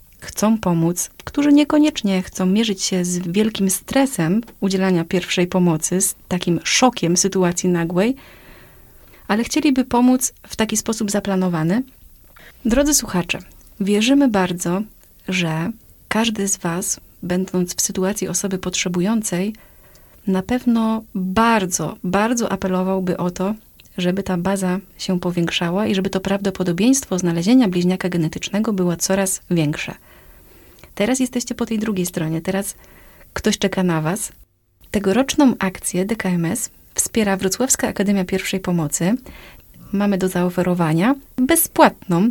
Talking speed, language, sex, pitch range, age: 120 wpm, Polish, female, 180-220 Hz, 30-49